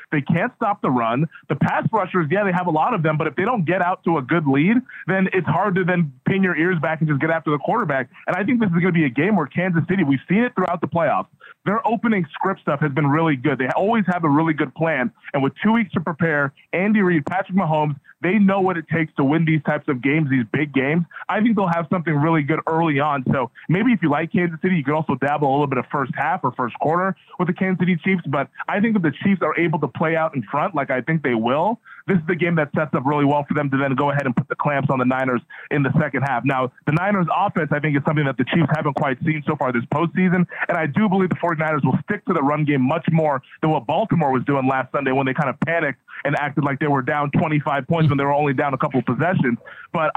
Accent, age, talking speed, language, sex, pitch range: American, 20-39, 285 wpm, English, male, 145-180 Hz